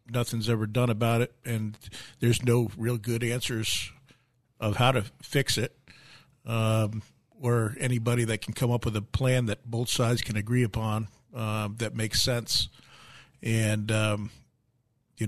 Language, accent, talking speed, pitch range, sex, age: English, American, 155 wpm, 110-125 Hz, male, 50-69